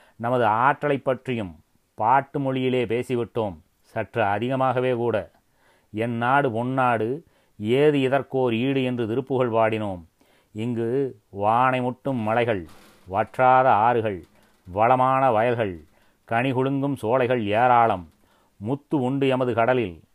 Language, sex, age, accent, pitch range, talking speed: Tamil, male, 30-49, native, 115-135 Hz, 100 wpm